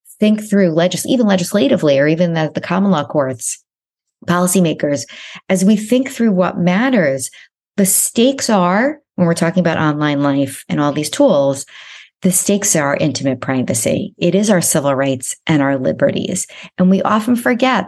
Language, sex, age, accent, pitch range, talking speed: English, female, 40-59, American, 150-190 Hz, 170 wpm